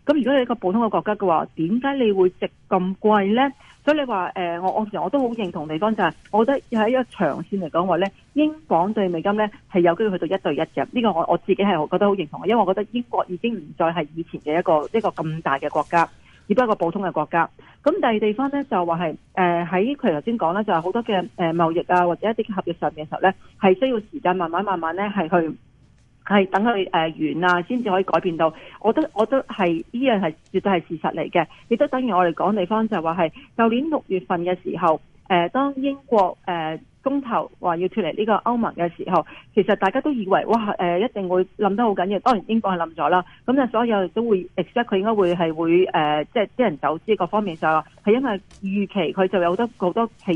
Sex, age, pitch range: female, 40-59, 170-225 Hz